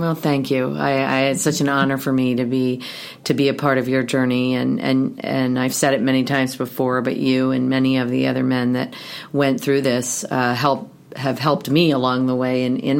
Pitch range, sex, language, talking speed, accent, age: 125-140 Hz, female, English, 235 wpm, American, 40-59